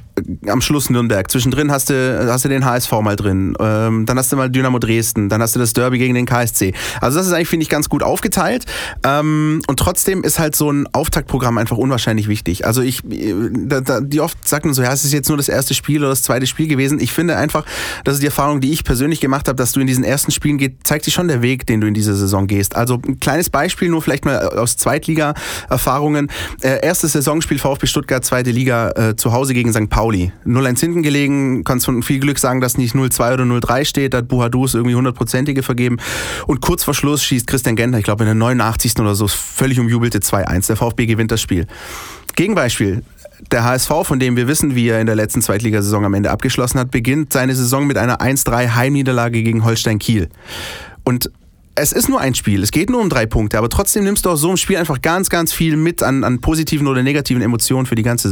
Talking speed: 220 wpm